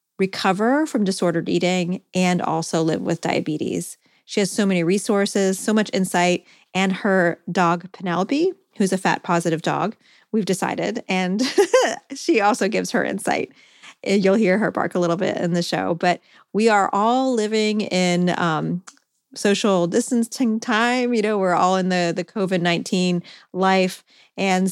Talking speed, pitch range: 155 wpm, 175-220 Hz